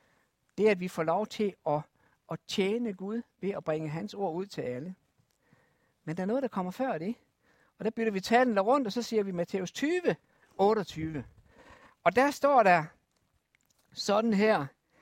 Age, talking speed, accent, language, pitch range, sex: 60-79, 180 wpm, native, Danish, 165-235 Hz, male